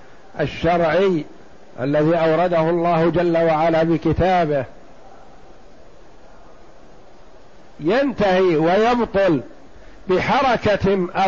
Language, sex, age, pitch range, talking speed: Arabic, male, 50-69, 175-215 Hz, 55 wpm